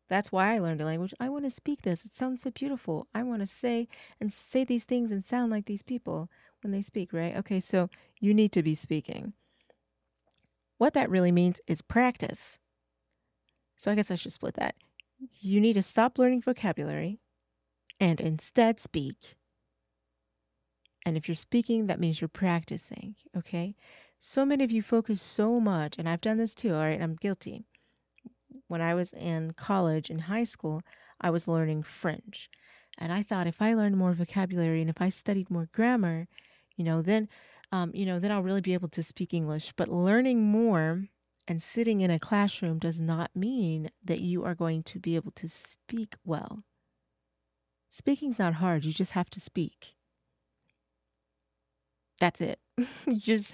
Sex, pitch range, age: female, 165-220 Hz, 30-49